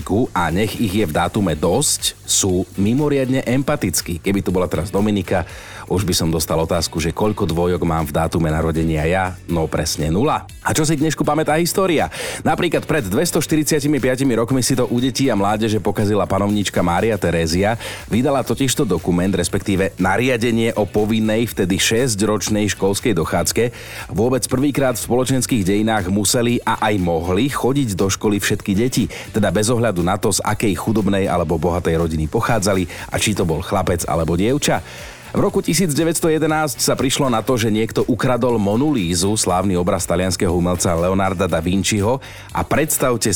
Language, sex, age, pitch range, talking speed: Slovak, male, 40-59, 90-120 Hz, 160 wpm